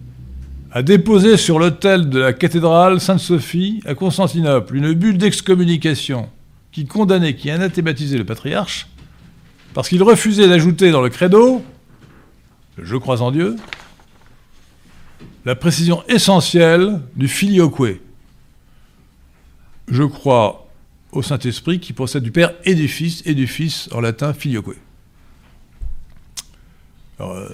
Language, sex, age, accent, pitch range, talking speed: French, male, 50-69, French, 105-170 Hz, 120 wpm